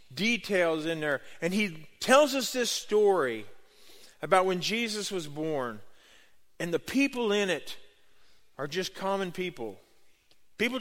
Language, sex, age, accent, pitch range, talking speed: English, male, 40-59, American, 160-230 Hz, 135 wpm